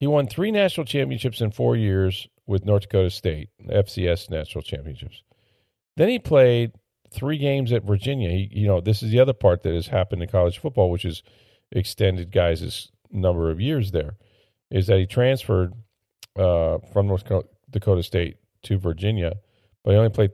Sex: male